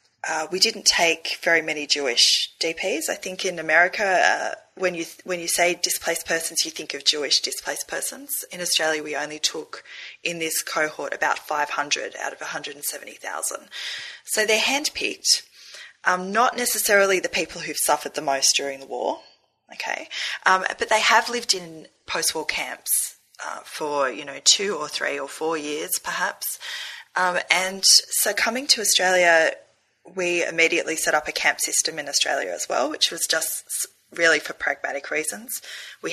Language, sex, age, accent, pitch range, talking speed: English, female, 20-39, Australian, 160-225 Hz, 165 wpm